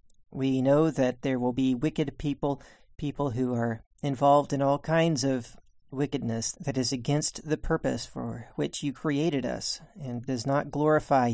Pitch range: 130-165 Hz